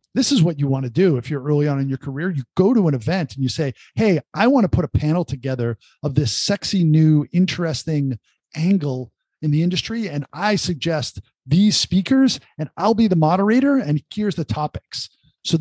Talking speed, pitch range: 210 wpm, 140-185 Hz